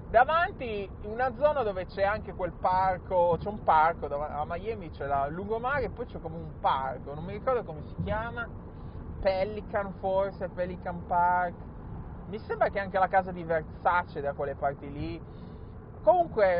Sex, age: male, 20-39